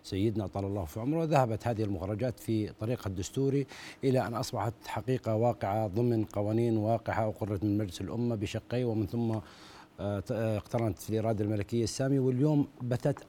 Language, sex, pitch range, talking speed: Arabic, male, 110-135 Hz, 150 wpm